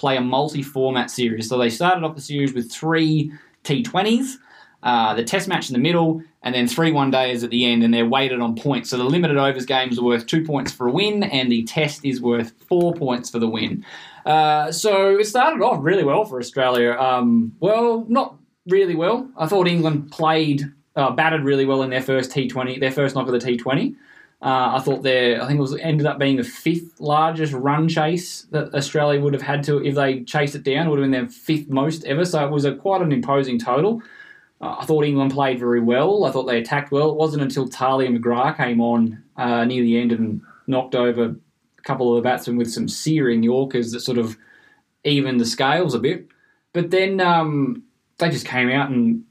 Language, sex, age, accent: English, male, 10-29, Australian